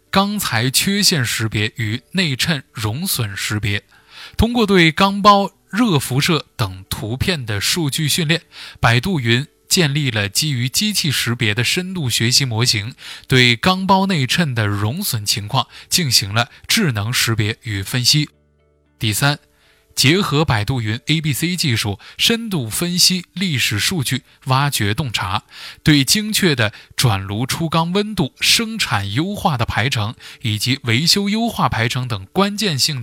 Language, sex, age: Chinese, male, 20-39